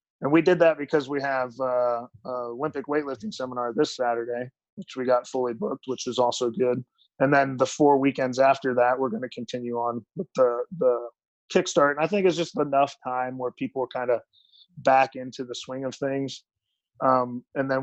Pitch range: 130-155 Hz